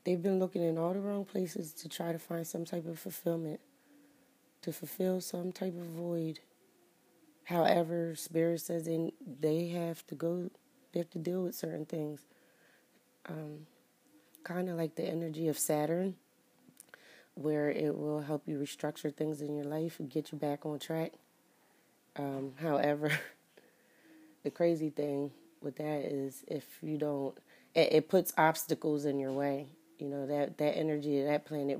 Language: English